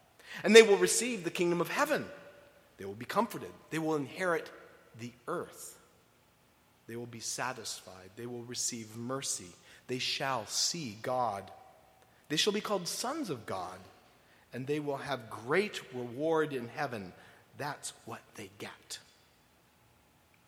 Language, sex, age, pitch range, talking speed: English, male, 50-69, 130-155 Hz, 140 wpm